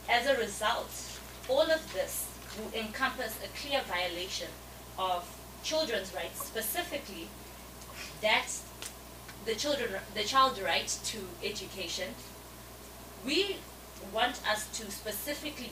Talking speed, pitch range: 105 wpm, 185-285 Hz